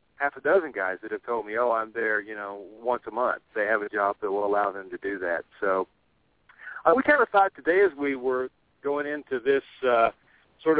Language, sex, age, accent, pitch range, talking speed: English, male, 50-69, American, 110-145 Hz, 235 wpm